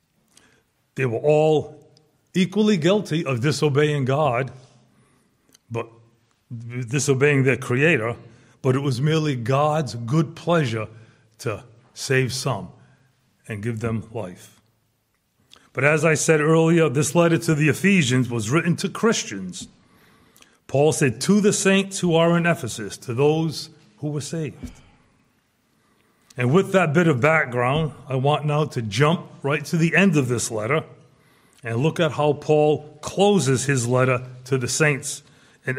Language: English